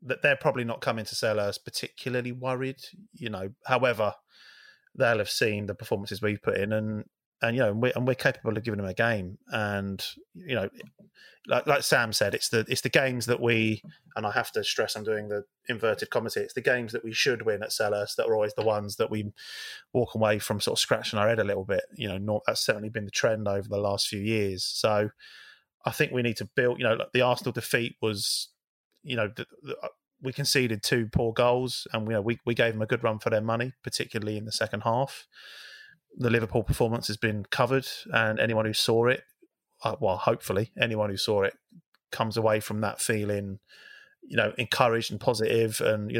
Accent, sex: British, male